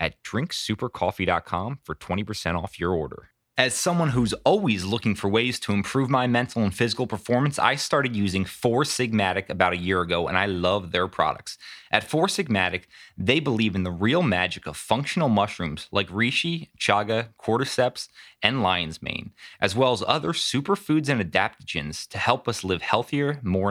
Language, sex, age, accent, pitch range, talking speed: English, male, 30-49, American, 95-125 Hz, 170 wpm